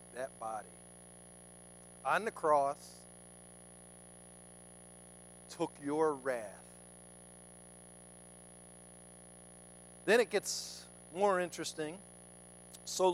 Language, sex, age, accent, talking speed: English, male, 50-69, American, 65 wpm